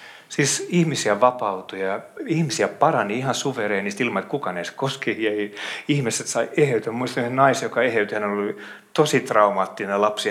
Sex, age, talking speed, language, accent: male, 30-49, 165 wpm, Finnish, native